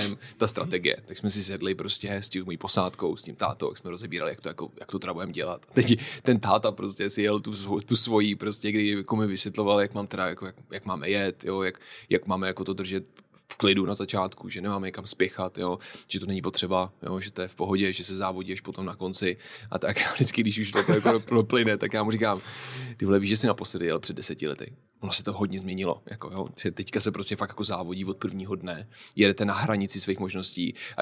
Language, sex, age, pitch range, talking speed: Czech, male, 20-39, 95-120 Hz, 230 wpm